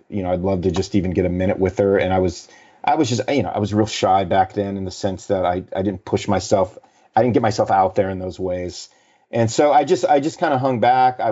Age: 30-49